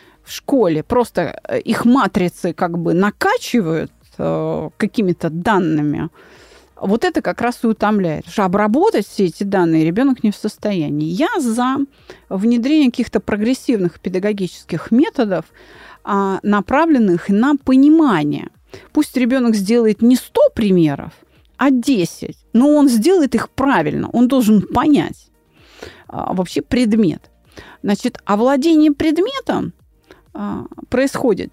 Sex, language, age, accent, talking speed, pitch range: female, Russian, 30-49, native, 115 wpm, 190-280 Hz